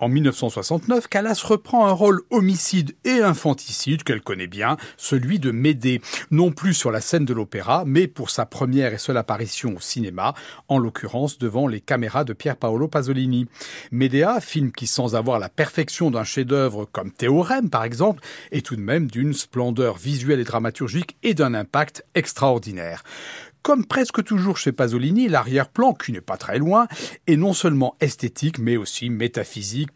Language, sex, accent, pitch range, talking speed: French, male, French, 120-175 Hz, 170 wpm